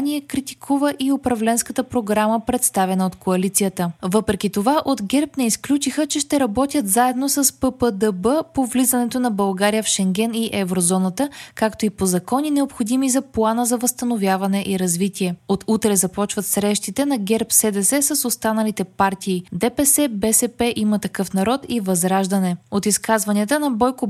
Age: 20-39